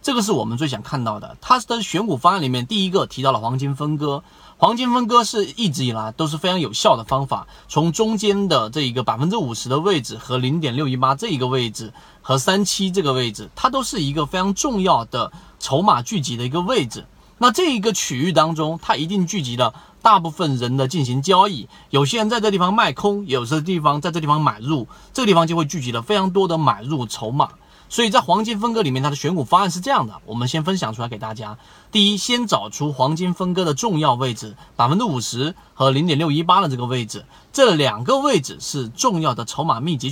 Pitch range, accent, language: 130-195 Hz, native, Chinese